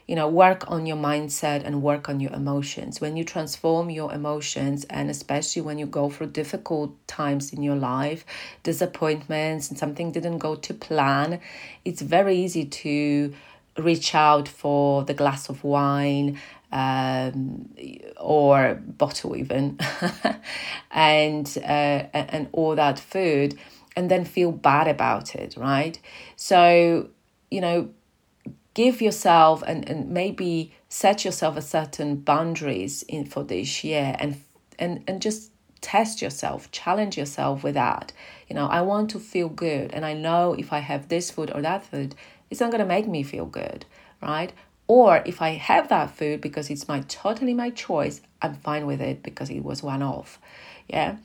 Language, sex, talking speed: English, female, 160 wpm